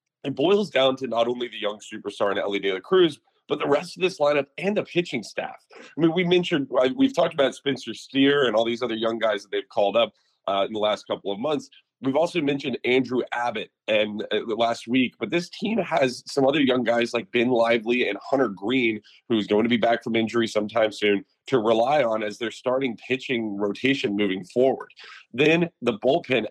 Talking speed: 215 wpm